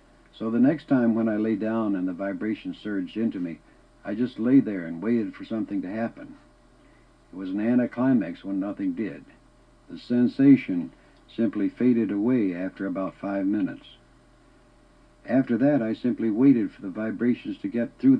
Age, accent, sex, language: 60-79, American, male, English